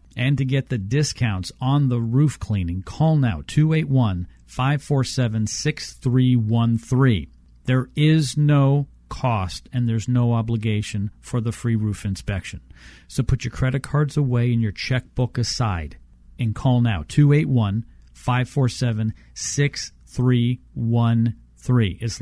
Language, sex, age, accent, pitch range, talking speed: English, male, 40-59, American, 105-145 Hz, 110 wpm